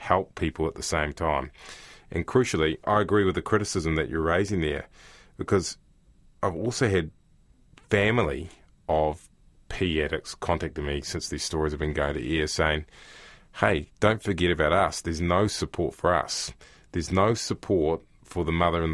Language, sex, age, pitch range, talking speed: English, male, 30-49, 80-90 Hz, 170 wpm